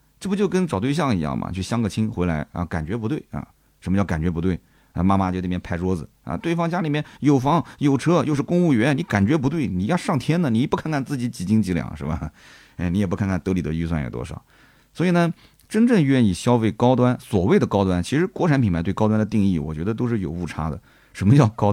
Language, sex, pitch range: Chinese, male, 100-165 Hz